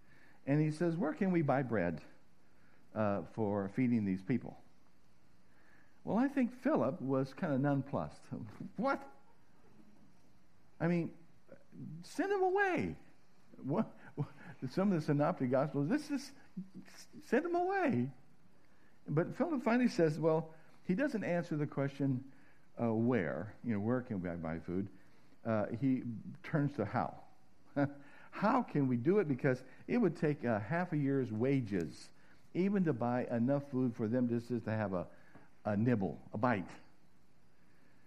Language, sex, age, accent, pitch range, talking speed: Dutch, male, 60-79, American, 115-175 Hz, 140 wpm